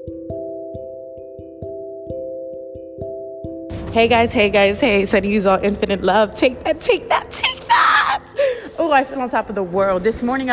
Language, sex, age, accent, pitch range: English, female, 20-39, American, 175-225 Hz